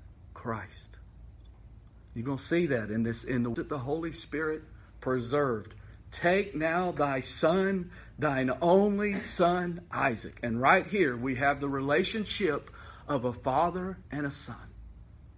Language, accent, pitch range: English, American, 110-165 Hz